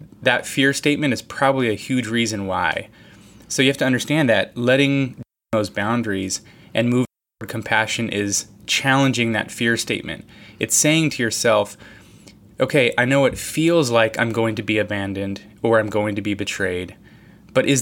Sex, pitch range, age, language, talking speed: male, 105-135 Hz, 20-39, English, 170 wpm